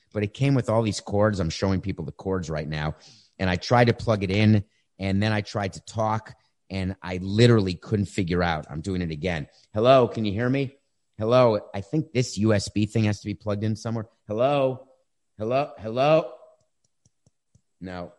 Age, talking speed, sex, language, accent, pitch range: 30-49, 190 wpm, male, English, American, 95-125 Hz